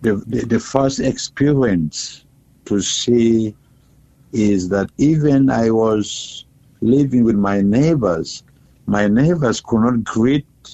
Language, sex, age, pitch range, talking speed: English, male, 60-79, 100-125 Hz, 115 wpm